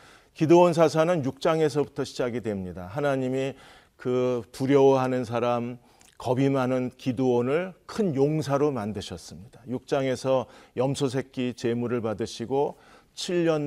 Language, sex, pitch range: Korean, male, 120-155 Hz